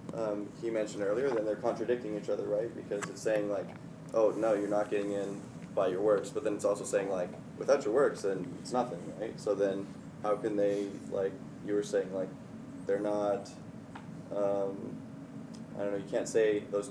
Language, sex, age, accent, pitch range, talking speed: English, male, 20-39, American, 105-140 Hz, 200 wpm